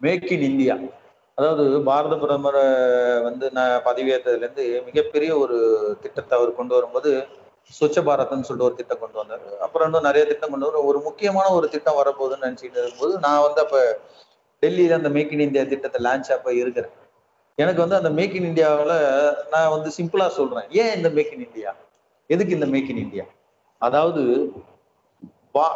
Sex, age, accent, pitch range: male, 40-59, native, 140-235 Hz